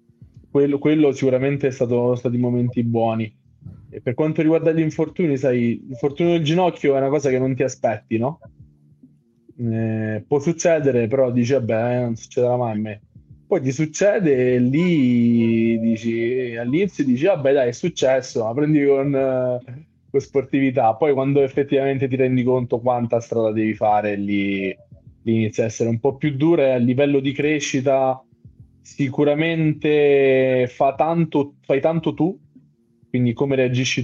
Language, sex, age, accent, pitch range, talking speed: Italian, male, 20-39, native, 120-140 Hz, 155 wpm